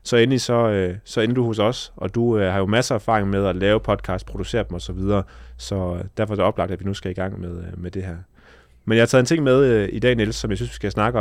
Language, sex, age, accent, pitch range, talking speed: Danish, male, 30-49, native, 95-115 Hz, 295 wpm